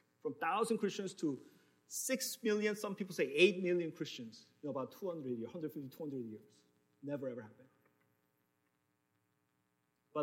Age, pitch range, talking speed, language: 40-59, 105-165 Hz, 135 wpm, English